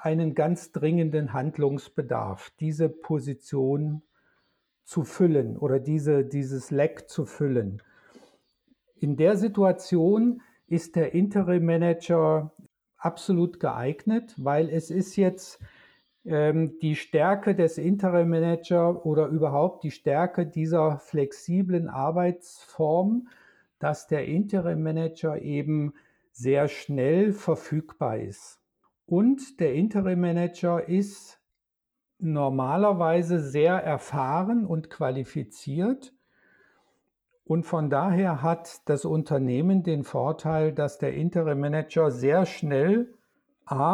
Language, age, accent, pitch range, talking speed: German, 50-69, German, 150-185 Hz, 95 wpm